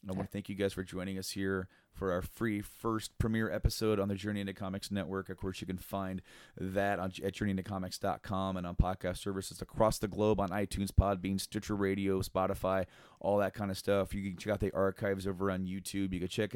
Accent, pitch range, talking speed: American, 90-100 Hz, 215 wpm